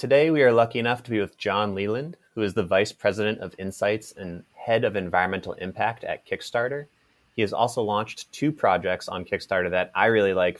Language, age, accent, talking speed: English, 30-49, American, 205 wpm